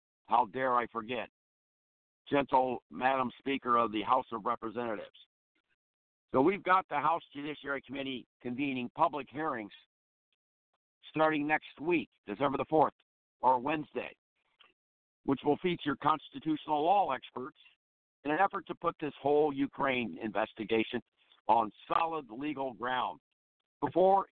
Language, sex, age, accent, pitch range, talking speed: English, male, 60-79, American, 125-160 Hz, 125 wpm